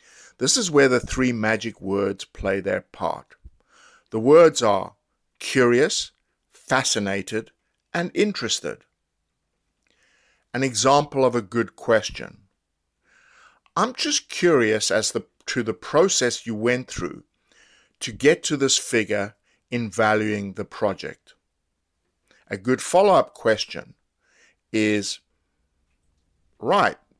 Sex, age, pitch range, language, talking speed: male, 50-69, 95-125 Hz, English, 105 wpm